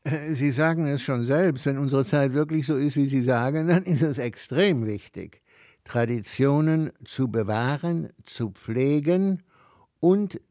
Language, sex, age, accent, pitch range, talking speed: German, male, 60-79, German, 115-150 Hz, 145 wpm